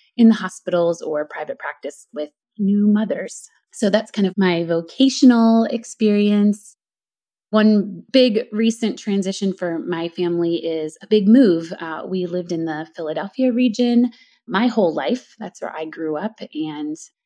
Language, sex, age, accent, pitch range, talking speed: English, female, 20-39, American, 165-230 Hz, 150 wpm